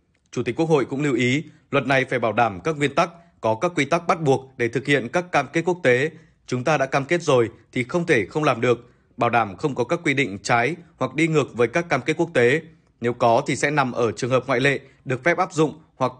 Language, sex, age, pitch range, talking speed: Vietnamese, male, 20-39, 120-155 Hz, 270 wpm